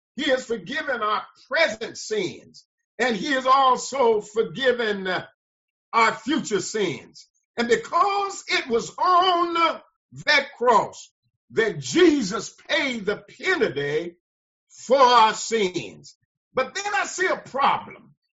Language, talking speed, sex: English, 115 wpm, male